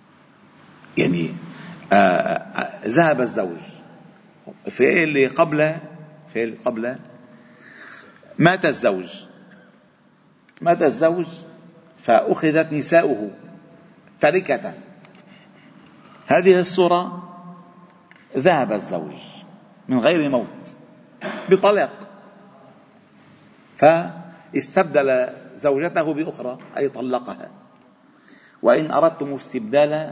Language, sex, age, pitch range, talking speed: Arabic, male, 50-69, 140-190 Hz, 60 wpm